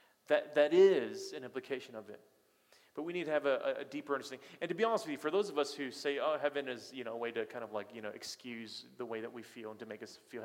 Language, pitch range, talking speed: English, 115-150 Hz, 305 wpm